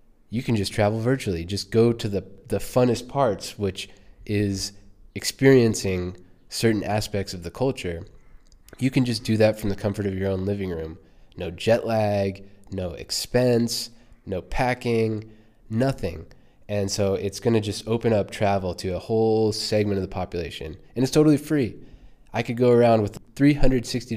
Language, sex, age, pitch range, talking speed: English, male, 20-39, 95-115 Hz, 165 wpm